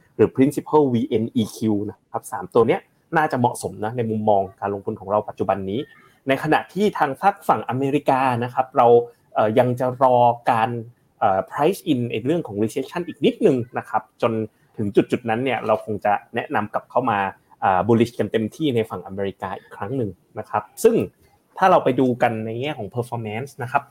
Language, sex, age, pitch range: Thai, male, 20-39, 110-145 Hz